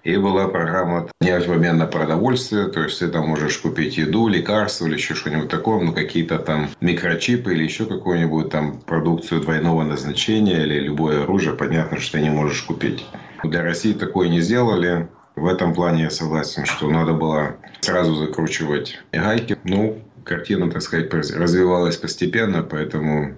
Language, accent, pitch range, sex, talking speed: Russian, native, 75-90 Hz, male, 160 wpm